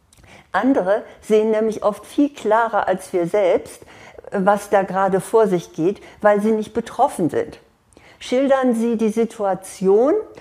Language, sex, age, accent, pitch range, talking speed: German, female, 50-69, German, 190-235 Hz, 140 wpm